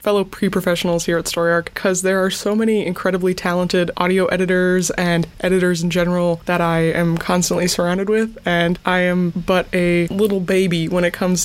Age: 20-39